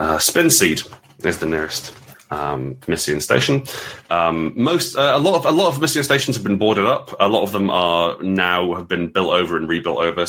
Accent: British